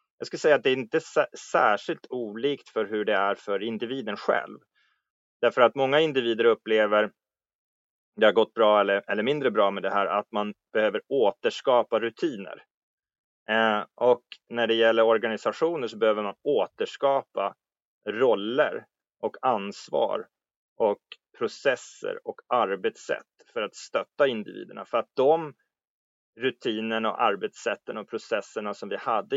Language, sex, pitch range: Swedish, male, 105-140 Hz